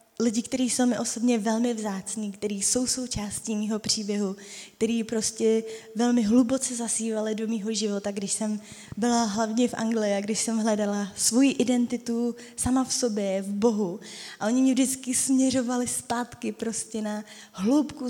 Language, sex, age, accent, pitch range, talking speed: Czech, female, 20-39, native, 215-240 Hz, 155 wpm